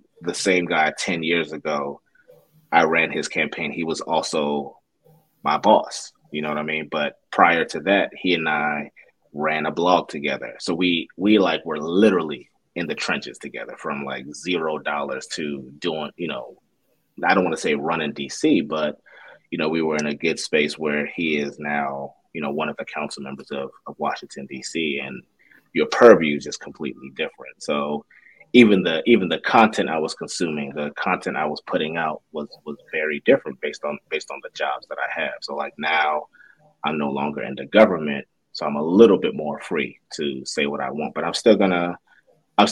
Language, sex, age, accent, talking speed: English, male, 30-49, American, 200 wpm